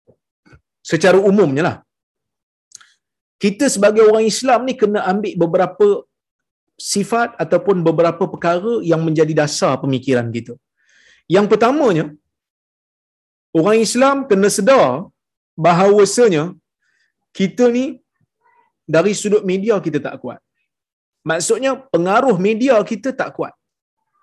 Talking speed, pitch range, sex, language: 100 wpm, 170-245 Hz, male, Malayalam